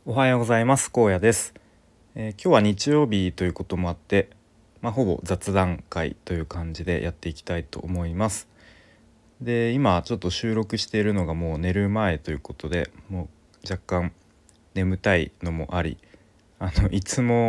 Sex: male